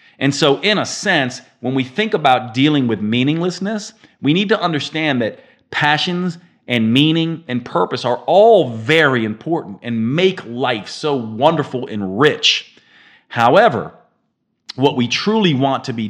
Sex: male